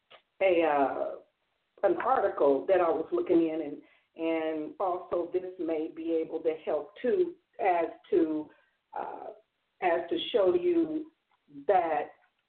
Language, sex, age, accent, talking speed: English, female, 50-69, American, 130 wpm